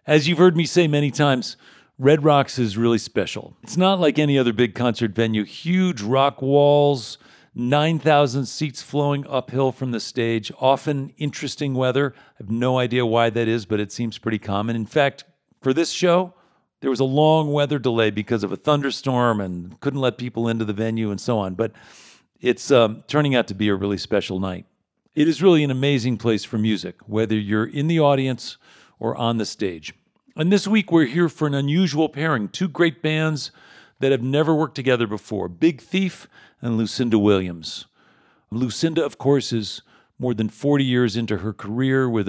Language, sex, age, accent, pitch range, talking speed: English, male, 50-69, American, 110-145 Hz, 190 wpm